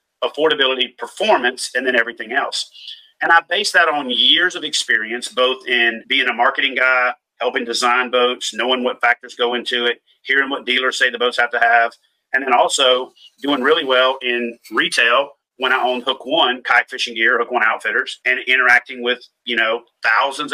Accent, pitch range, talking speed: American, 120-140 Hz, 185 wpm